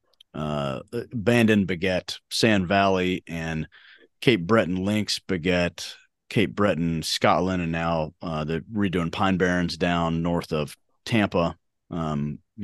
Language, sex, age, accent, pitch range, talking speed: English, male, 30-49, American, 85-115 Hz, 120 wpm